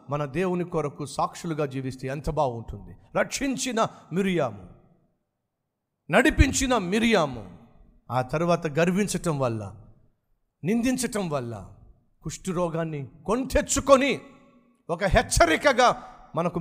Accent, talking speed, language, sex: native, 85 wpm, Telugu, male